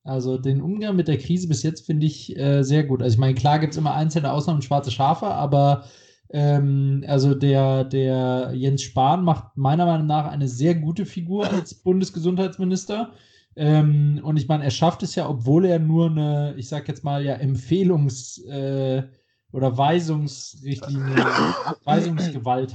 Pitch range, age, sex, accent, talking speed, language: 140-160 Hz, 20-39, male, German, 165 wpm, German